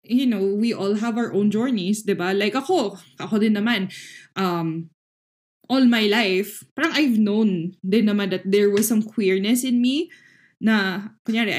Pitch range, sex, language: 200-265 Hz, female, Filipino